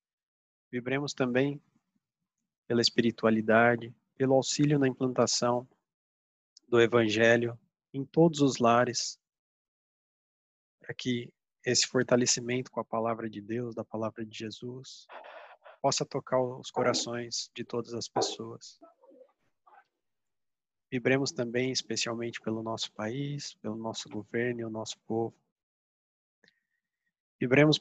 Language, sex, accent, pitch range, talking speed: Portuguese, male, Brazilian, 110-130 Hz, 105 wpm